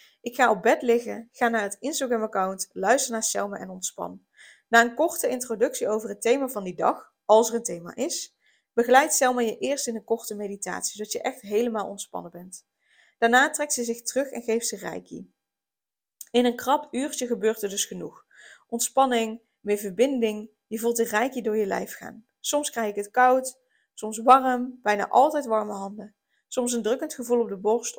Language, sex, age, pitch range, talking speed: Dutch, female, 20-39, 205-255 Hz, 190 wpm